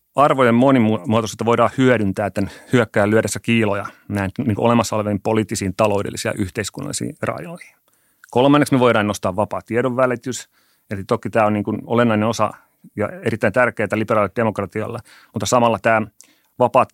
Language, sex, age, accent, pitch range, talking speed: Finnish, male, 30-49, native, 105-125 Hz, 135 wpm